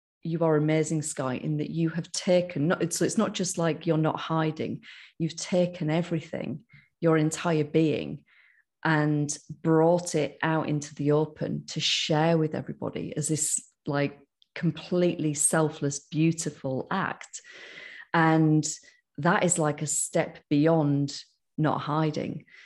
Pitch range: 145-165 Hz